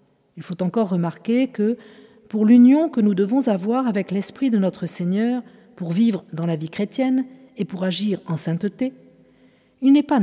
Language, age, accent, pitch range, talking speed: French, 50-69, French, 190-240 Hz, 175 wpm